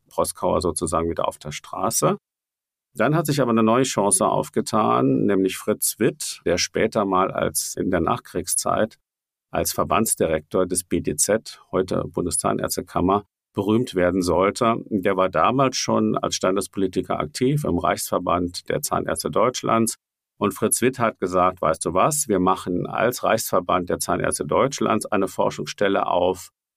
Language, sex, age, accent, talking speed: German, male, 50-69, German, 140 wpm